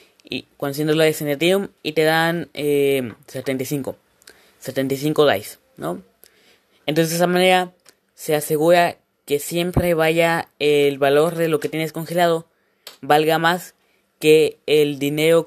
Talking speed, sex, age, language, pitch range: 130 wpm, female, 20-39, Spanish, 145-170 Hz